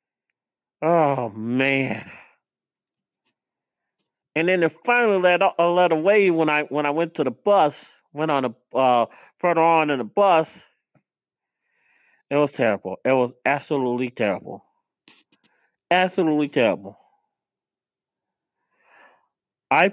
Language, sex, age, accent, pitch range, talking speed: English, male, 40-59, American, 150-215 Hz, 110 wpm